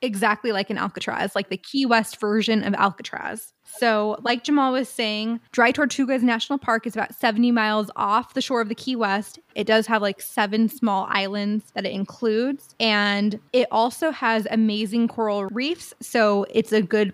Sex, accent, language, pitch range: female, American, English, 210-245 Hz